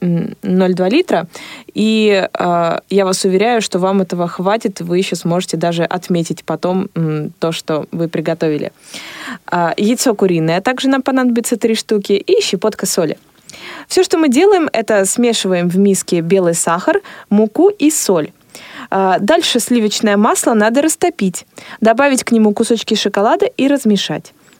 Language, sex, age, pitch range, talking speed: Russian, female, 20-39, 180-260 Hz, 140 wpm